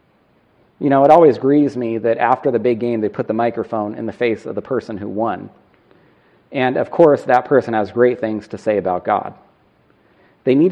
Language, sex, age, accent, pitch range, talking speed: English, male, 40-59, American, 115-145 Hz, 205 wpm